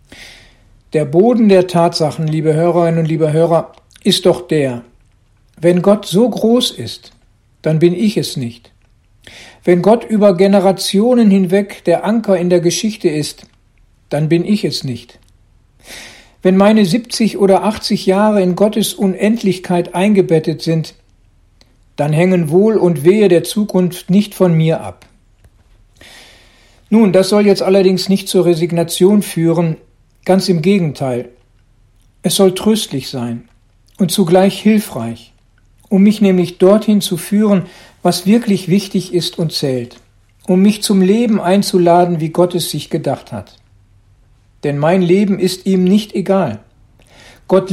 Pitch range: 120-195 Hz